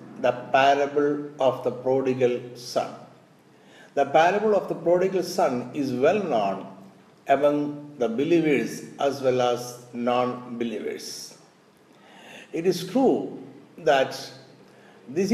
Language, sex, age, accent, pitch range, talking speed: Malayalam, male, 60-79, native, 135-195 Hz, 110 wpm